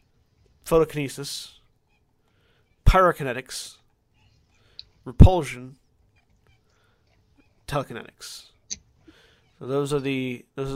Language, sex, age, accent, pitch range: English, male, 30-49, American, 120-150 Hz